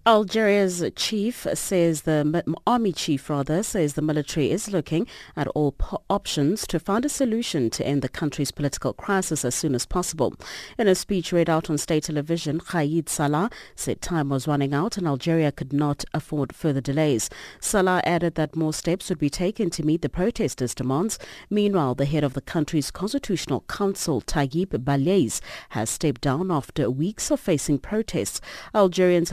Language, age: English, 40-59